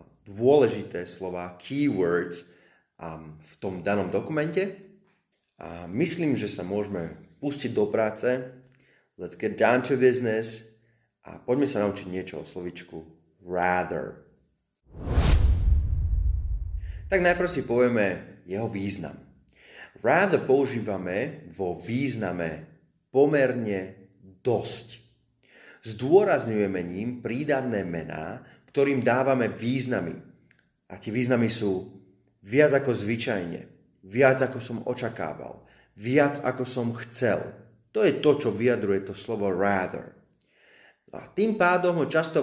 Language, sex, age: Slovak, male, 30-49